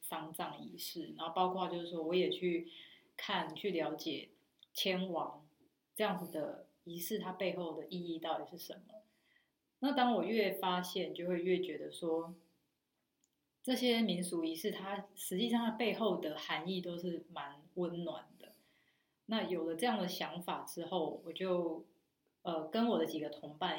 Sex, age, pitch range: female, 30-49, 165-205 Hz